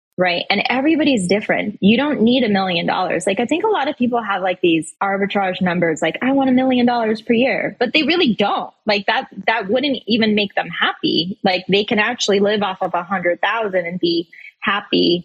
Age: 20-39